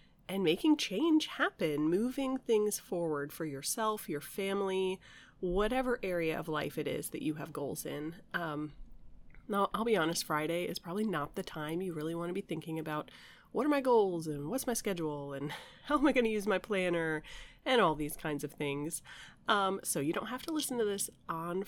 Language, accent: English, American